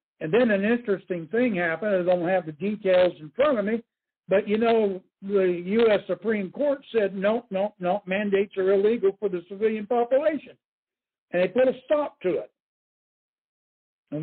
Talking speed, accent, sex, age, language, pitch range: 175 wpm, American, male, 60-79, English, 190-235 Hz